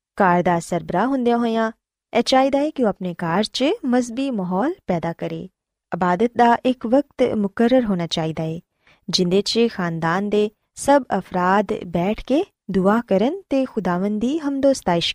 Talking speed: 150 wpm